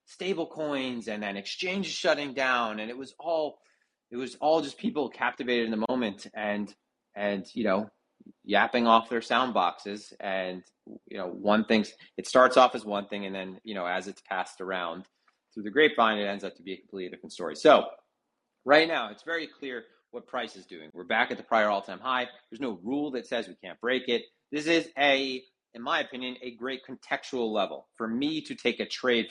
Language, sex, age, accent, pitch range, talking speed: English, male, 30-49, American, 110-145 Hz, 210 wpm